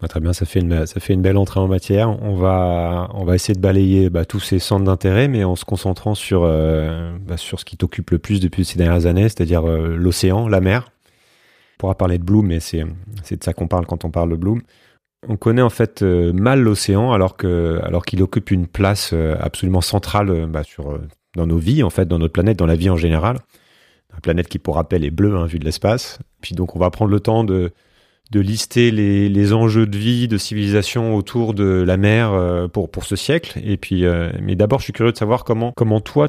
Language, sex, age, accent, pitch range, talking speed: French, male, 30-49, French, 90-110 Hz, 240 wpm